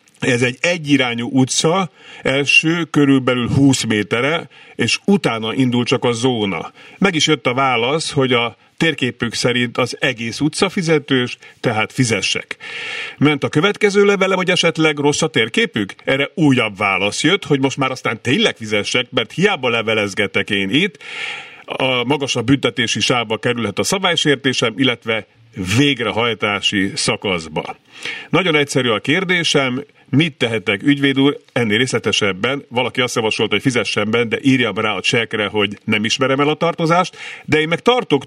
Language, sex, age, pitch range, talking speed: Hungarian, male, 50-69, 120-155 Hz, 150 wpm